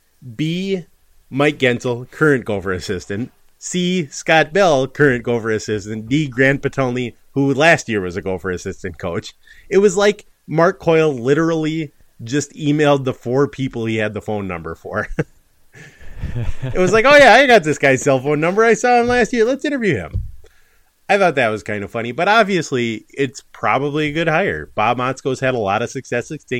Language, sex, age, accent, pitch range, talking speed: English, male, 30-49, American, 100-145 Hz, 185 wpm